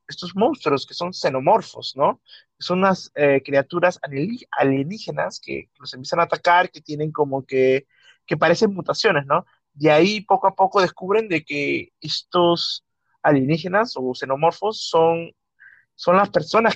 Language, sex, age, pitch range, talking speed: Spanish, male, 30-49, 145-180 Hz, 145 wpm